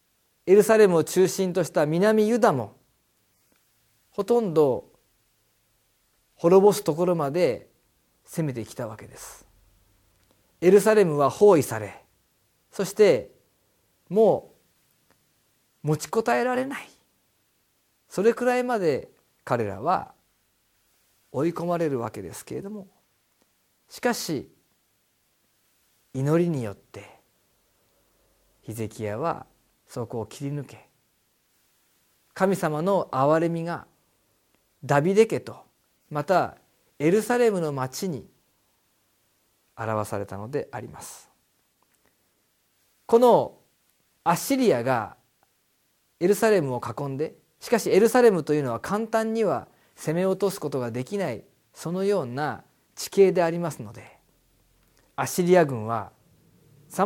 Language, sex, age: Japanese, male, 40-59